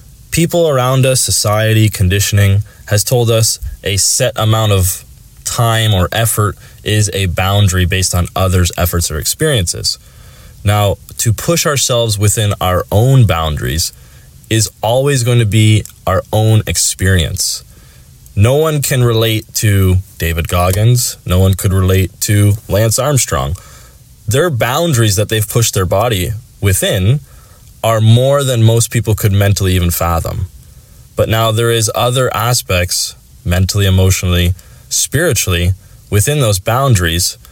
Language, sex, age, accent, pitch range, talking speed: English, male, 20-39, American, 95-115 Hz, 135 wpm